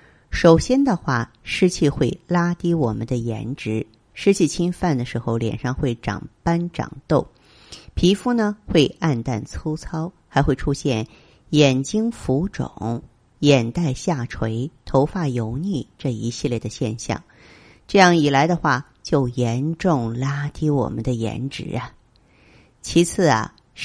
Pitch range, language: 125-165 Hz, Chinese